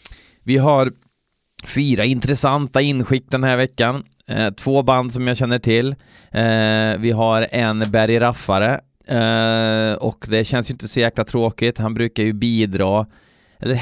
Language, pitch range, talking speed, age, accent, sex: Swedish, 95-125 Hz, 135 wpm, 30-49, native, male